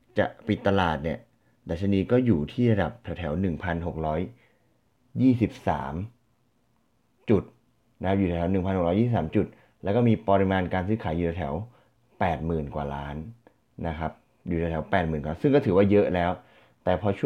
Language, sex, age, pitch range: Thai, male, 30-49, 85-105 Hz